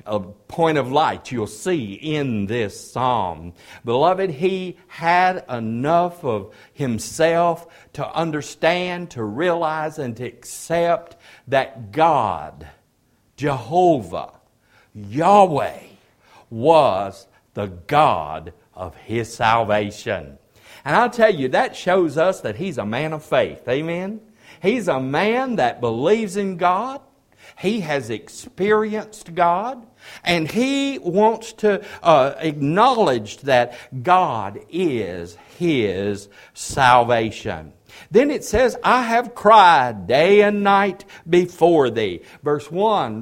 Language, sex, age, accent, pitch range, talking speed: English, male, 60-79, American, 120-190 Hz, 110 wpm